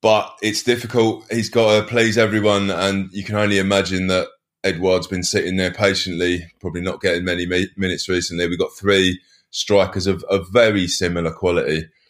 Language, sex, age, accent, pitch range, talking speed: English, male, 20-39, British, 90-100 Hz, 180 wpm